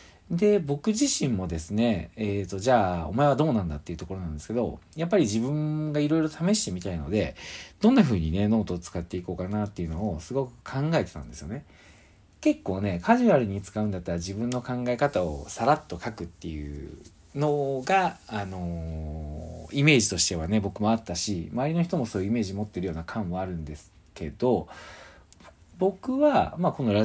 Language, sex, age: Japanese, male, 40-59